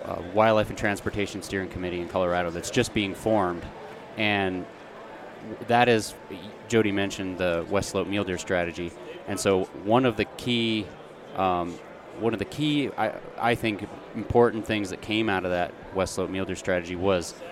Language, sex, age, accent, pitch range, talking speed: English, male, 30-49, American, 95-110 Hz, 170 wpm